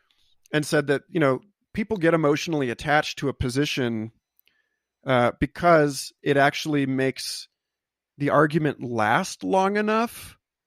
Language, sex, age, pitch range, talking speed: English, male, 40-59, 130-165 Hz, 125 wpm